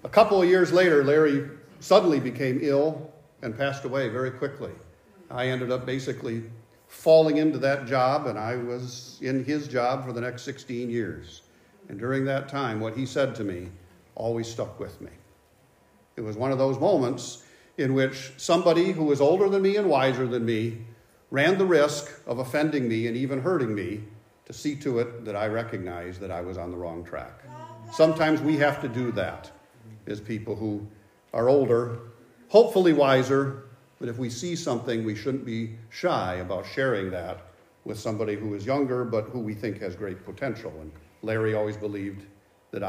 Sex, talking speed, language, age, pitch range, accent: male, 180 wpm, English, 50-69, 110-145 Hz, American